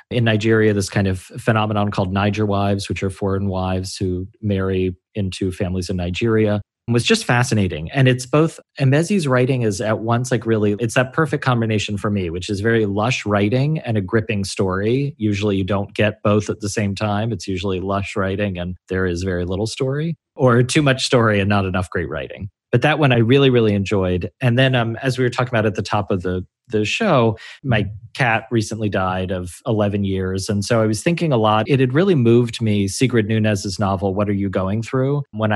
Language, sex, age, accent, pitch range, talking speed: English, male, 30-49, American, 100-120 Hz, 210 wpm